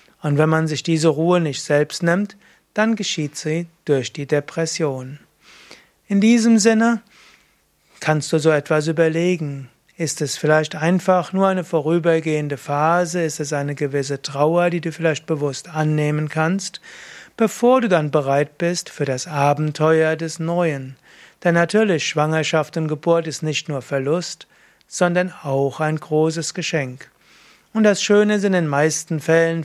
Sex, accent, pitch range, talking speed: male, German, 150-175 Hz, 150 wpm